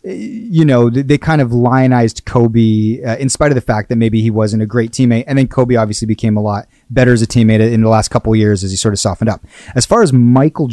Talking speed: 265 wpm